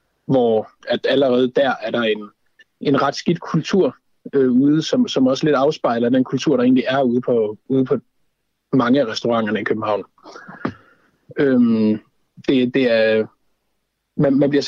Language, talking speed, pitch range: Danish, 140 wpm, 115-160 Hz